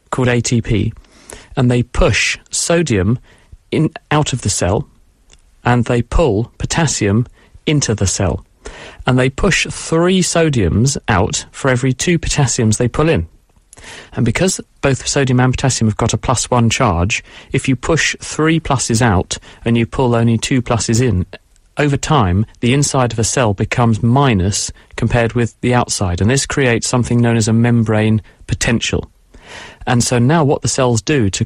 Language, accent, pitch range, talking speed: English, British, 110-130 Hz, 165 wpm